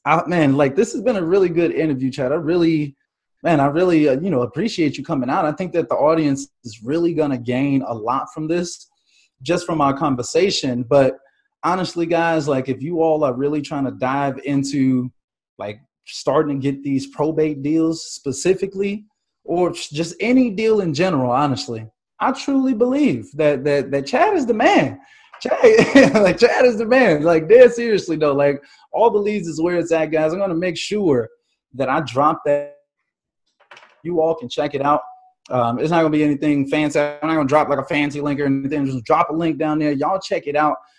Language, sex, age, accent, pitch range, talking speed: English, male, 20-39, American, 145-180 Hz, 205 wpm